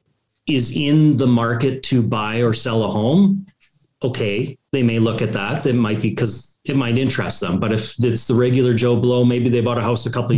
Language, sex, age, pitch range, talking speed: English, male, 30-49, 110-125 Hz, 225 wpm